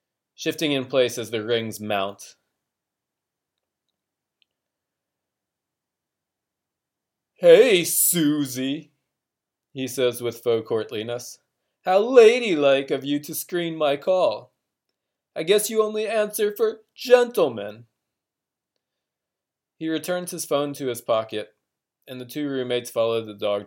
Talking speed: 110 wpm